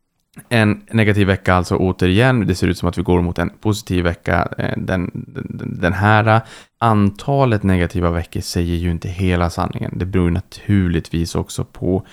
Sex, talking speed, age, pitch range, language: male, 165 wpm, 20-39, 85-100 Hz, Swedish